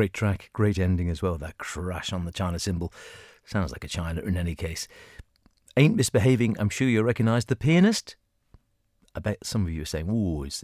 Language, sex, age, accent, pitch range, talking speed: English, male, 40-59, British, 90-115 Hz, 210 wpm